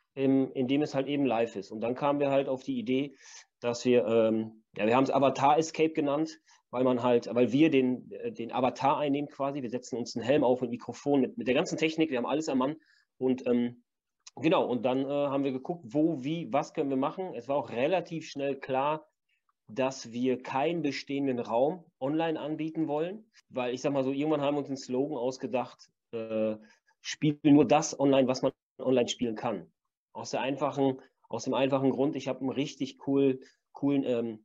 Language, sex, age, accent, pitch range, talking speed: German, male, 30-49, German, 120-145 Hz, 205 wpm